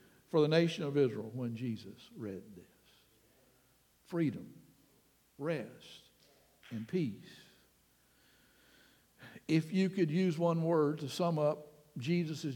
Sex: male